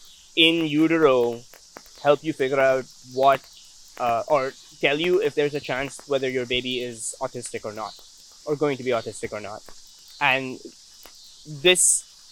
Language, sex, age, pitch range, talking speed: English, male, 20-39, 125-165 Hz, 150 wpm